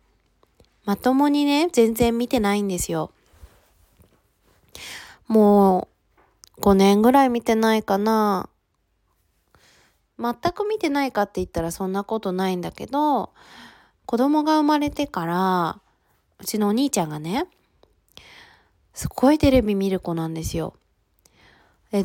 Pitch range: 170-250 Hz